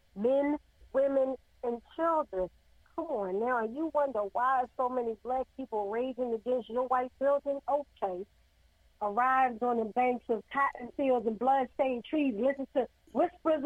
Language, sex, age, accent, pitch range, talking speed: English, female, 40-59, American, 215-275 Hz, 145 wpm